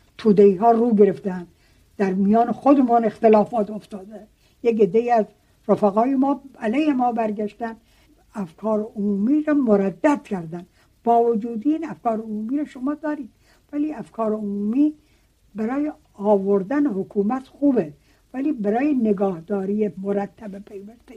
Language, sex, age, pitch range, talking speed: Persian, female, 60-79, 195-255 Hz, 115 wpm